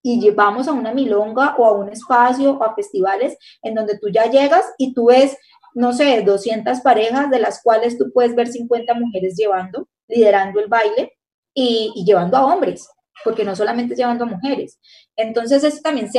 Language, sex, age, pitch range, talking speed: Spanish, female, 20-39, 205-255 Hz, 195 wpm